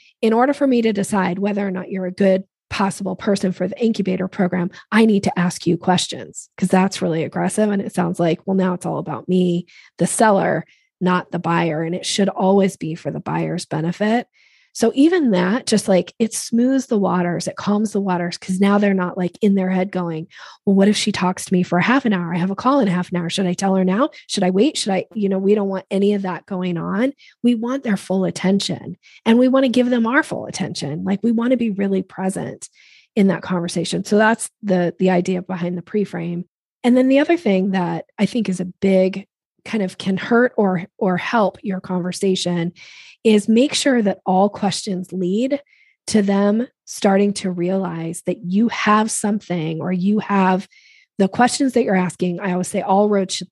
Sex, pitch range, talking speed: female, 180-215 Hz, 220 wpm